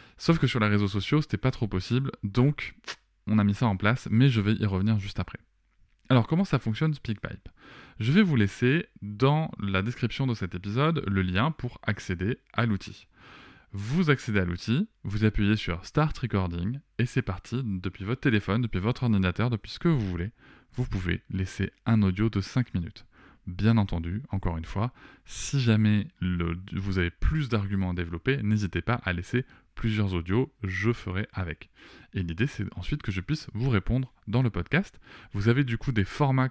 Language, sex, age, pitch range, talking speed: French, male, 20-39, 95-120 Hz, 190 wpm